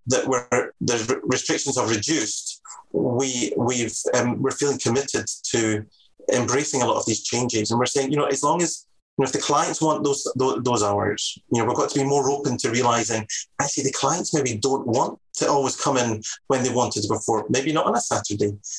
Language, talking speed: English, 210 wpm